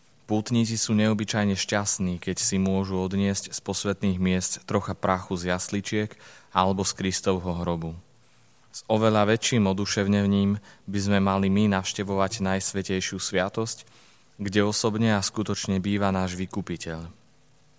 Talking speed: 125 wpm